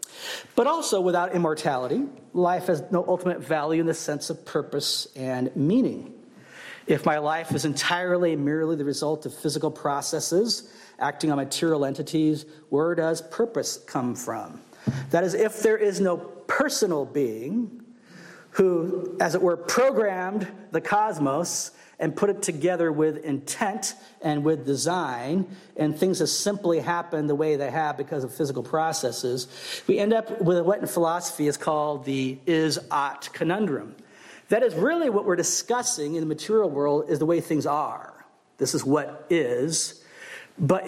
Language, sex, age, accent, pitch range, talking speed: English, male, 40-59, American, 150-200 Hz, 155 wpm